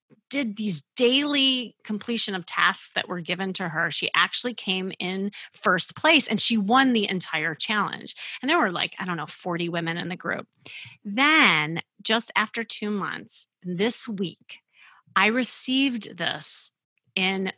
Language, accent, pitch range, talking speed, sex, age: English, American, 180-245 Hz, 155 wpm, female, 30-49